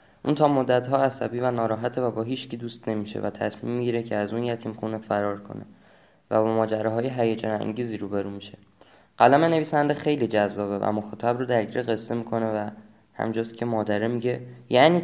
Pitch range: 110-135 Hz